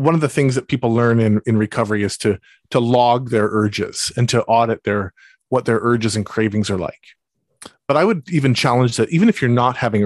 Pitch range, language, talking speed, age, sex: 105-130 Hz, English, 225 wpm, 40-59, male